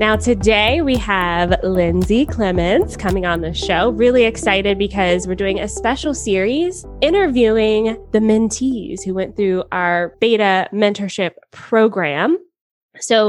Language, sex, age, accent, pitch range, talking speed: English, female, 20-39, American, 185-230 Hz, 130 wpm